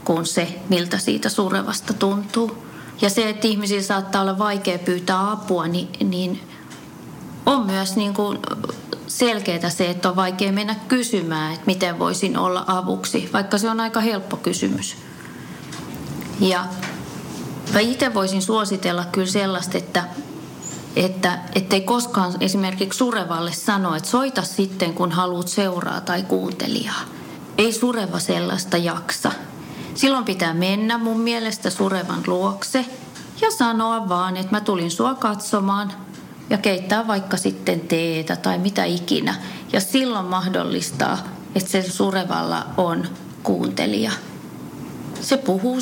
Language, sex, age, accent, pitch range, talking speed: Finnish, female, 30-49, native, 180-225 Hz, 125 wpm